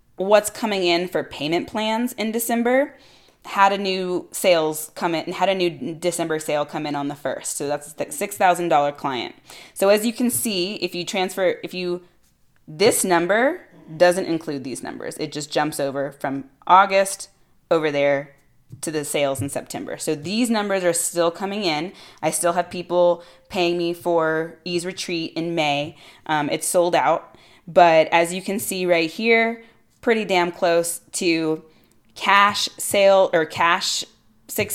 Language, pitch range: English, 160-205 Hz